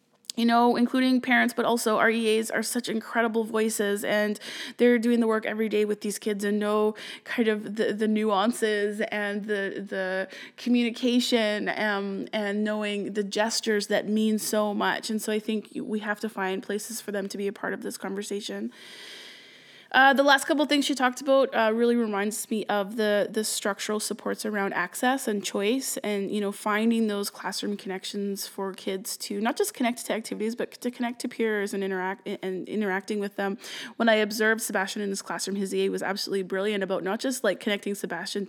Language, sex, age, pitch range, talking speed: English, female, 20-39, 200-230 Hz, 195 wpm